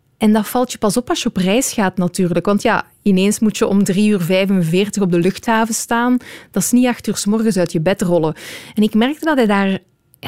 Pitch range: 180-235 Hz